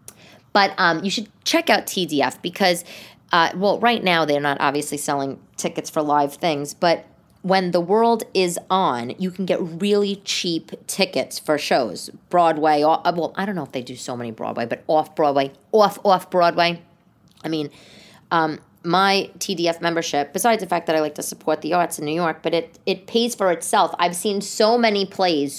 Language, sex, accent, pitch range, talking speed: English, female, American, 165-230 Hz, 195 wpm